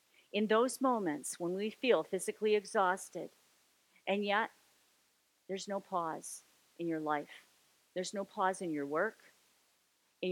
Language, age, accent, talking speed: English, 40-59, American, 135 wpm